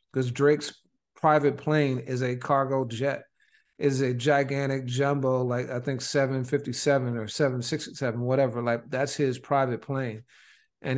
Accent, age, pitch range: American, 40-59, 125-145 Hz